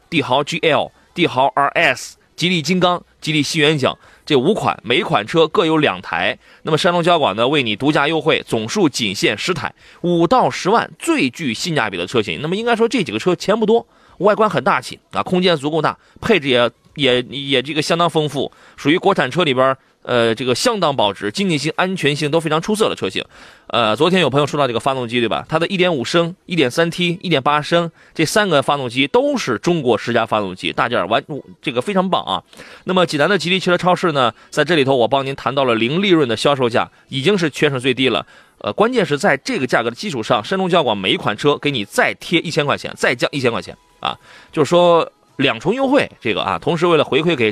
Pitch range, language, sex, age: 130-180 Hz, Chinese, male, 30-49